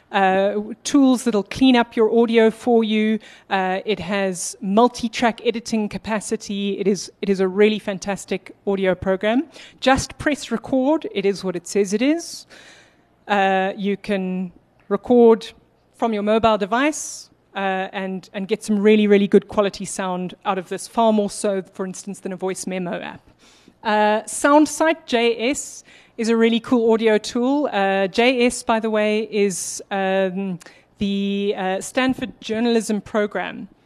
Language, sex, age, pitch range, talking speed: English, female, 30-49, 200-235 Hz, 150 wpm